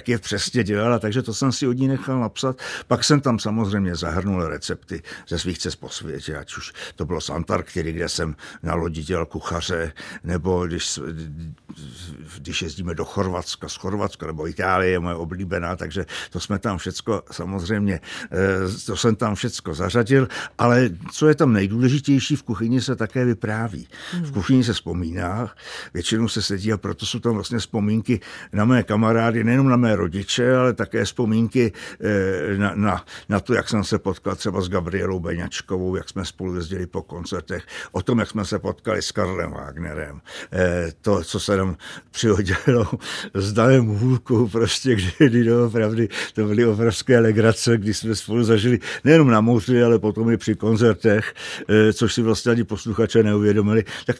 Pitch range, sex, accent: 90-120 Hz, male, native